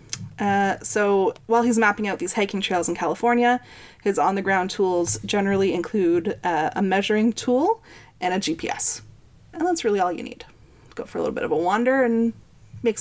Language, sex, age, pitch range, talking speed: English, female, 30-49, 185-235 Hz, 180 wpm